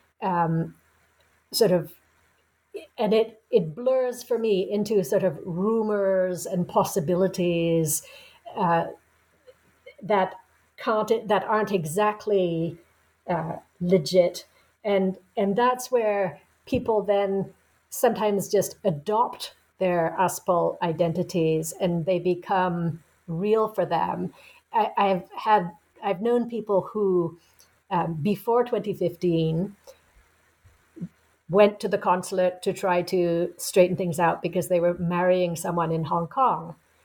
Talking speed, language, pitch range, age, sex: 110 wpm, English, 170-205 Hz, 50-69, female